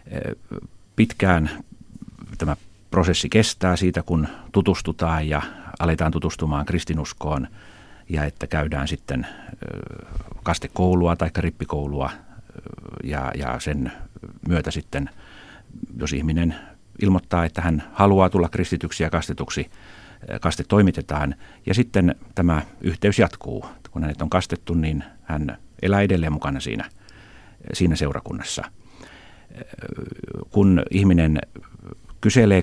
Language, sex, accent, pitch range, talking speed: Finnish, male, native, 75-95 Hz, 100 wpm